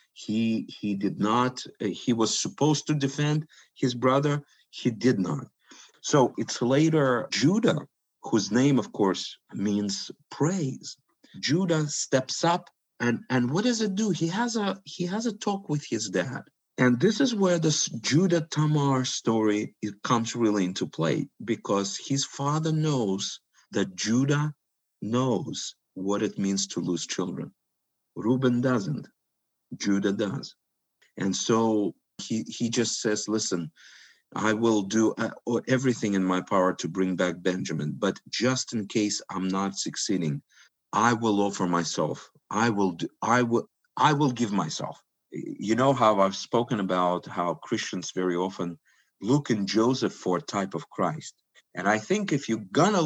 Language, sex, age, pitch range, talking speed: English, male, 50-69, 100-140 Hz, 155 wpm